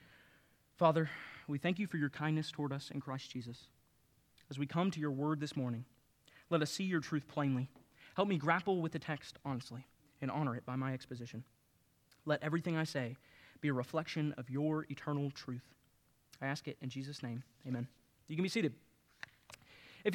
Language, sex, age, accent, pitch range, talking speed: English, male, 30-49, American, 135-205 Hz, 185 wpm